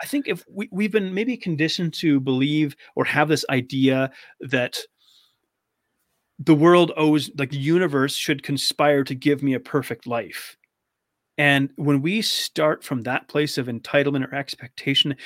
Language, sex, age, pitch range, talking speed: English, male, 30-49, 130-170 Hz, 155 wpm